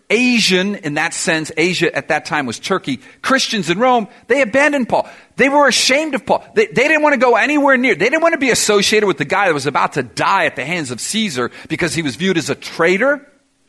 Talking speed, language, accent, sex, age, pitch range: 240 wpm, English, American, male, 50-69, 140-225 Hz